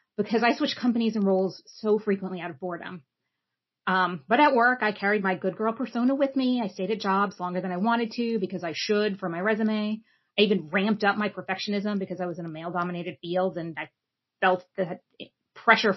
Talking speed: 210 wpm